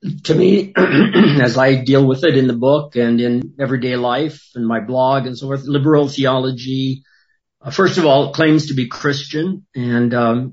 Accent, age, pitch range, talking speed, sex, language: American, 50-69, 120-145 Hz, 190 wpm, male, English